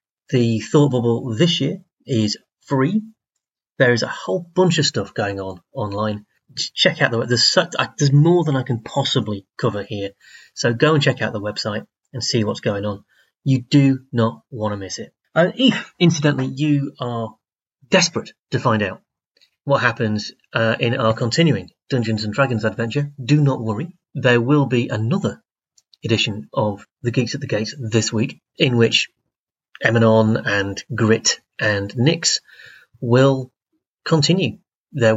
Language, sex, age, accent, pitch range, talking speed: English, male, 30-49, British, 110-145 Hz, 155 wpm